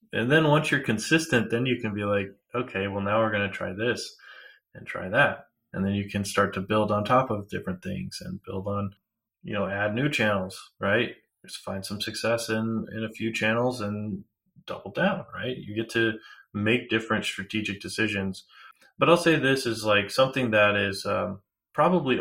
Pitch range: 95-110 Hz